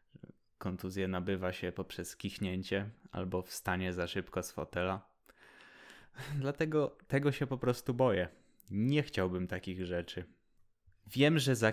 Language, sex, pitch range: Polish, male, 95-130 Hz